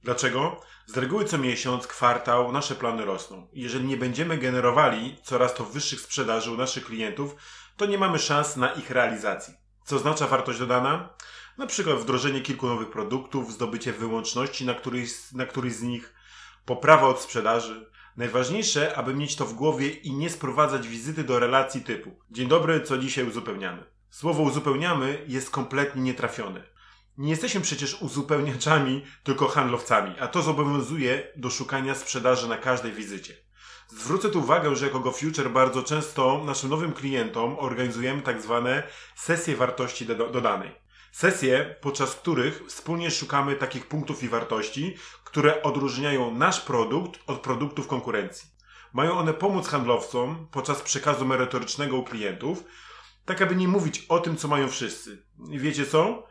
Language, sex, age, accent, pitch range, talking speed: Polish, male, 30-49, native, 125-150 Hz, 145 wpm